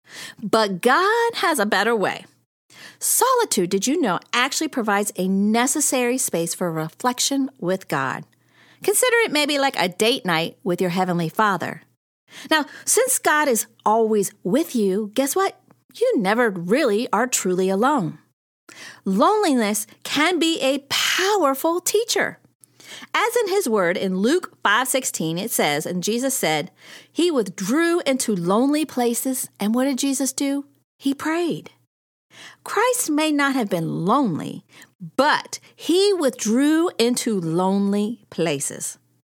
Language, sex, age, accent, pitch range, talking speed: English, female, 40-59, American, 205-320 Hz, 135 wpm